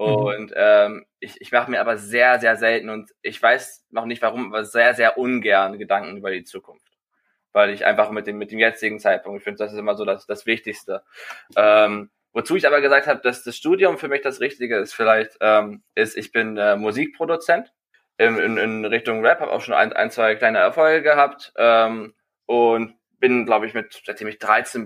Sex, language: male, German